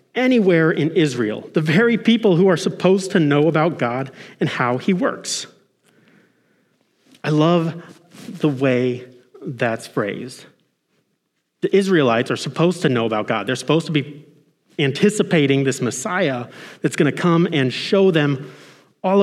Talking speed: 145 wpm